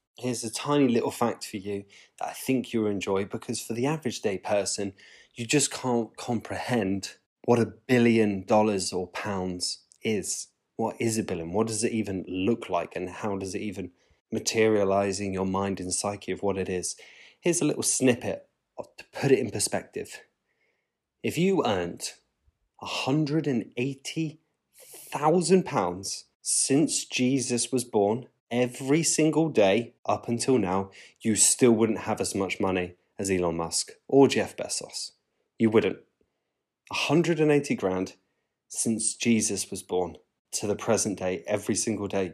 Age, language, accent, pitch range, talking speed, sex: 20-39, English, British, 95-130 Hz, 150 wpm, male